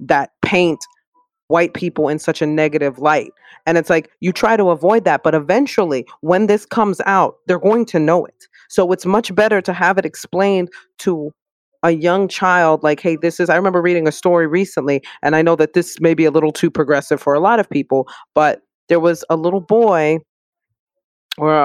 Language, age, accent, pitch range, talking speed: English, 30-49, American, 150-180 Hz, 200 wpm